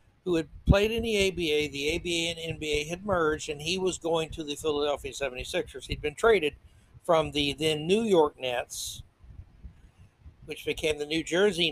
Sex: male